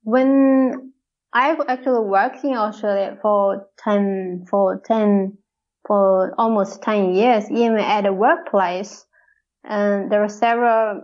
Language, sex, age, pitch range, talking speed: English, female, 20-39, 205-250 Hz, 120 wpm